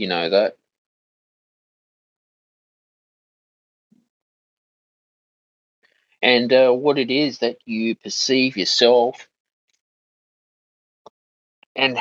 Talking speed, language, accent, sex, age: 65 wpm, English, Australian, male, 30-49